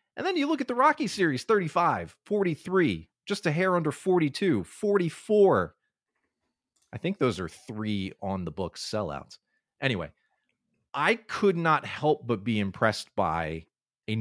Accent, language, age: American, English, 30-49